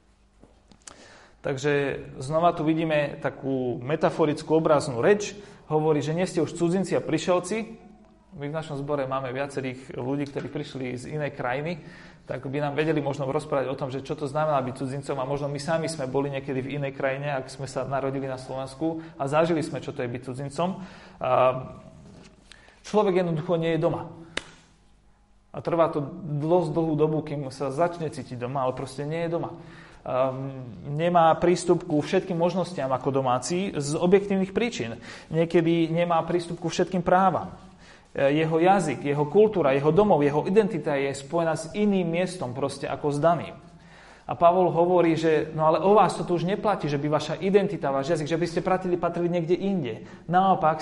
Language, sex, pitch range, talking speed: Slovak, male, 140-175 Hz, 175 wpm